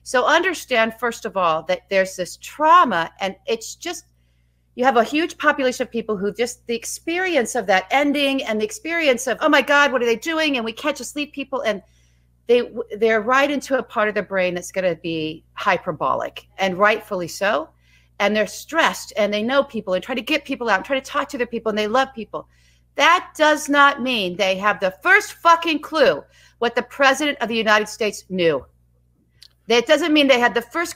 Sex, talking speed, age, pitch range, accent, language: female, 215 wpm, 40-59, 205-300 Hz, American, English